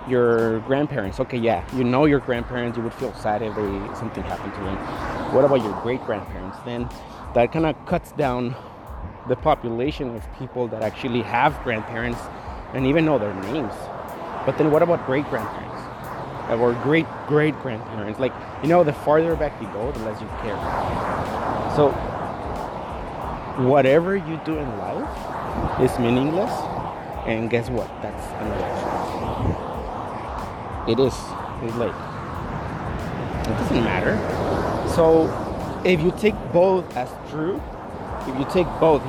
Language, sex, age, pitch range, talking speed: English, male, 30-49, 115-145 Hz, 140 wpm